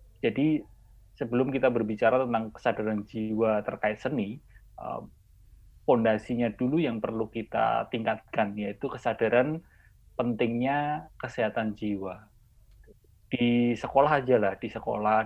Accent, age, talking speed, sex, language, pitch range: native, 20-39, 100 wpm, male, Indonesian, 105-130 Hz